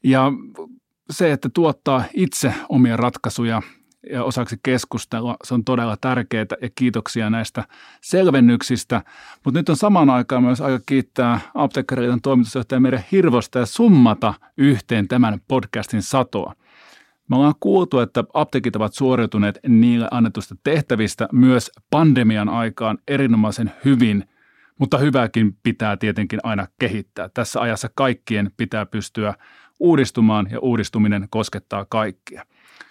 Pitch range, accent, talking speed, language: 110-135 Hz, native, 120 wpm, Finnish